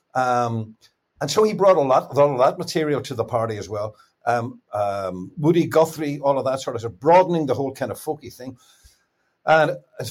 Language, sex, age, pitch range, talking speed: English, male, 60-79, 120-160 Hz, 220 wpm